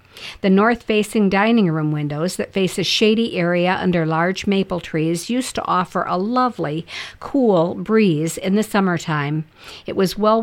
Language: English